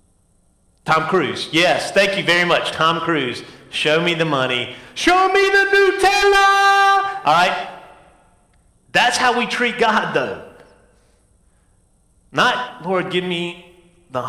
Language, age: English, 40-59